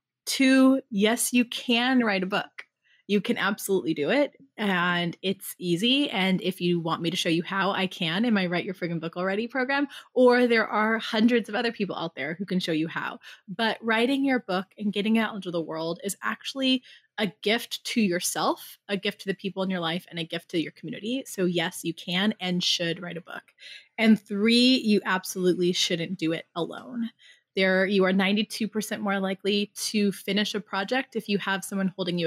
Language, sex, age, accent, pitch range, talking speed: English, female, 20-39, American, 175-225 Hz, 205 wpm